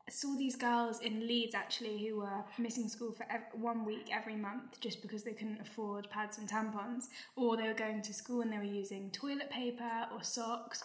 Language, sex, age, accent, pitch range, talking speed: English, female, 10-29, British, 215-235 Hz, 215 wpm